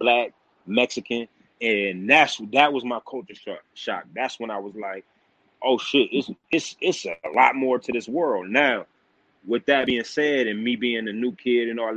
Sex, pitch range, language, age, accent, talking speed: male, 110-130 Hz, English, 30-49, American, 190 wpm